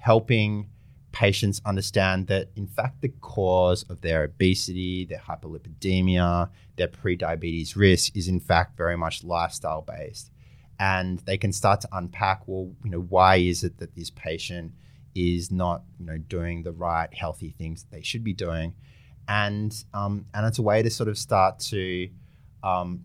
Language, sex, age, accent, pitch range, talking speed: English, male, 30-49, Australian, 90-110 Hz, 165 wpm